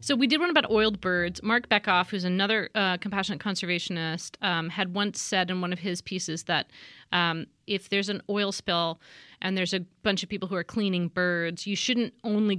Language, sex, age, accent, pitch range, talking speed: English, female, 30-49, American, 175-220 Hz, 205 wpm